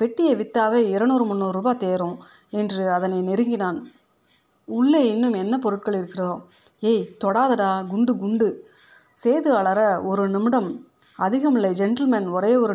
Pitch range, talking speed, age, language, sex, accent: 190-235 Hz, 120 wpm, 30-49, Tamil, female, native